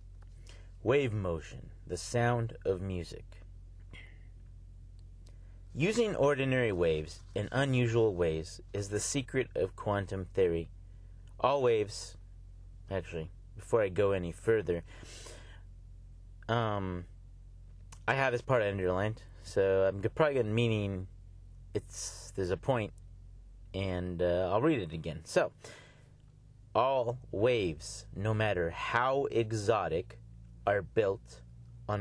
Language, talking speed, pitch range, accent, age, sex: English, 105 wpm, 90-115 Hz, American, 30-49, male